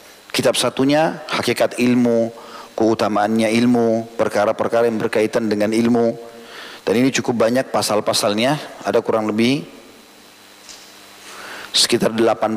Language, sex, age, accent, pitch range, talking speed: Indonesian, male, 40-59, native, 110-125 Hz, 100 wpm